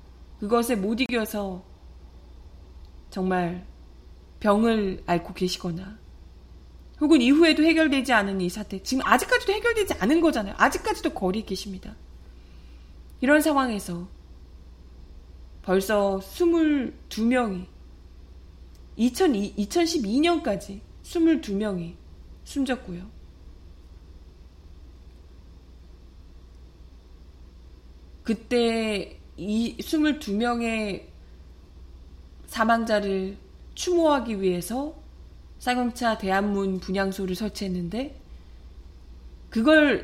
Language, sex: Korean, female